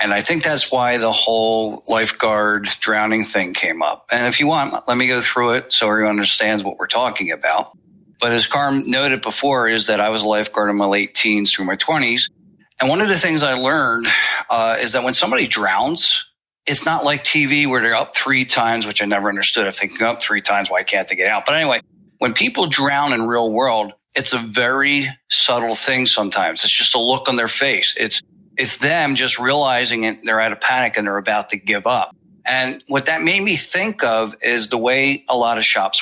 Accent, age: American, 50-69